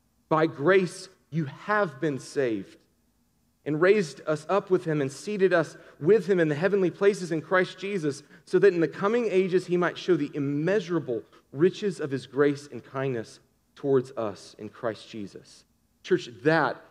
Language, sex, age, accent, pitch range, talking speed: English, male, 40-59, American, 125-185 Hz, 170 wpm